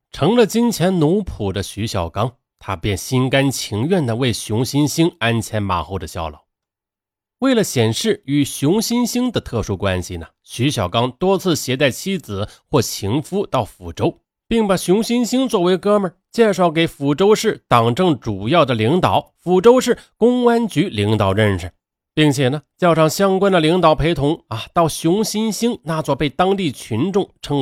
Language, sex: Chinese, male